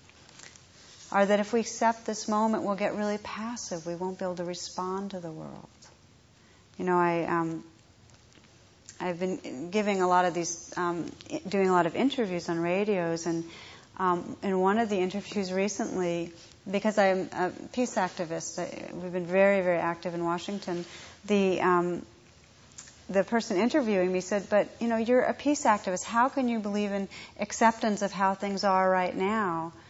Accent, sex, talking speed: American, female, 170 wpm